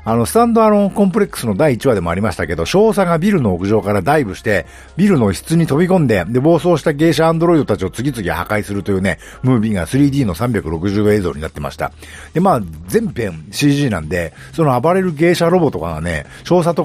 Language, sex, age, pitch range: Japanese, male, 50-69, 100-165 Hz